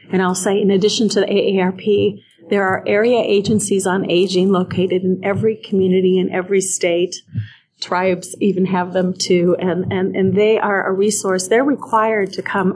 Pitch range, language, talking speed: 185-210 Hz, English, 175 wpm